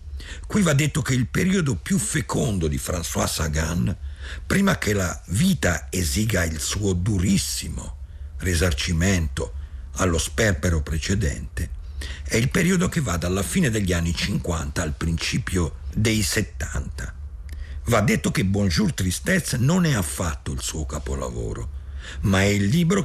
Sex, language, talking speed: male, Italian, 135 wpm